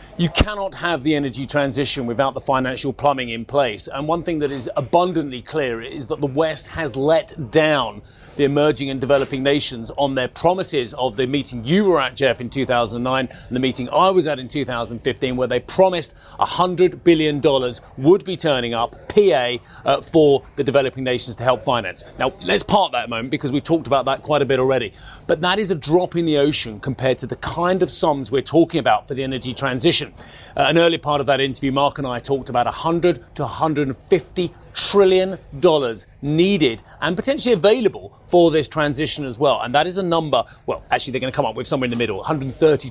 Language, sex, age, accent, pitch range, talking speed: English, male, 30-49, British, 125-160 Hz, 210 wpm